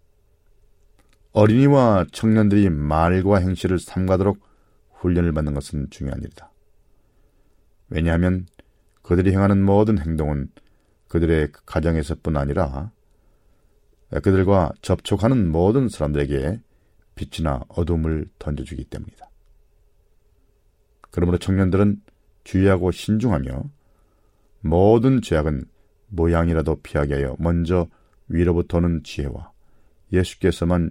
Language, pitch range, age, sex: Korean, 75-100 Hz, 40-59, male